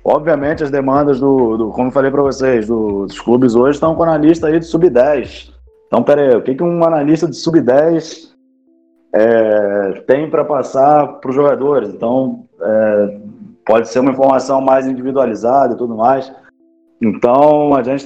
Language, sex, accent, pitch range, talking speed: Portuguese, male, Brazilian, 120-160 Hz, 170 wpm